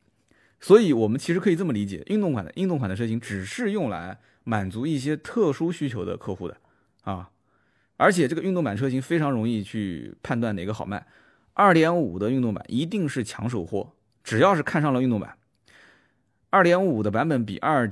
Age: 20-39